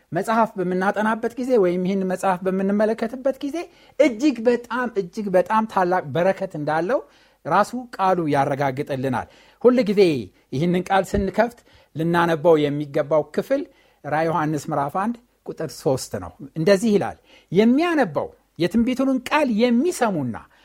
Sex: male